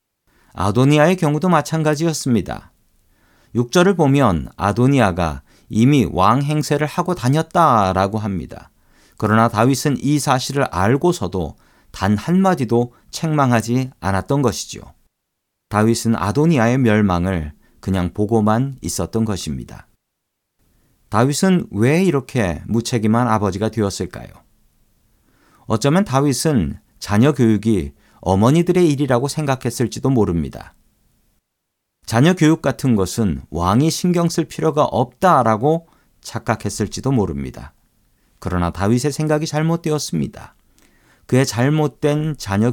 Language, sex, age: Korean, male, 40-59